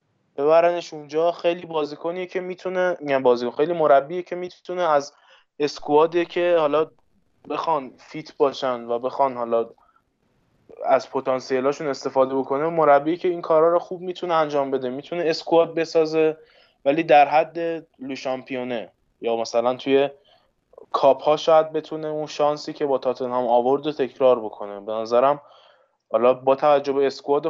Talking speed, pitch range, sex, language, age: 140 wpm, 135-165 Hz, male, Persian, 20-39